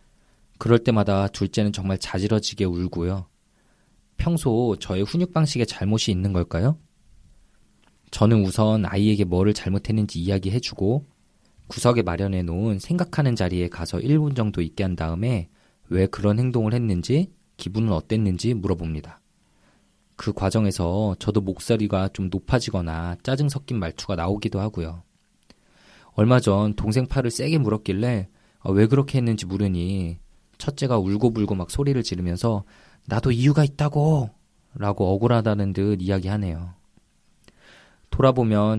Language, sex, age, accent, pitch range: Korean, male, 20-39, native, 95-120 Hz